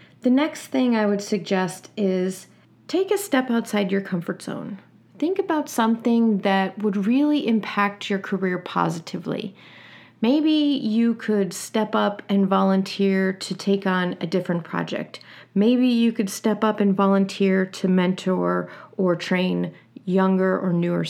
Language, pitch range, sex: English, 185-235 Hz, female